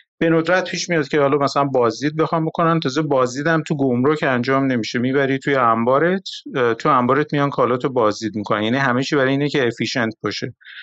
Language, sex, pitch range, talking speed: Persian, male, 125-155 Hz, 200 wpm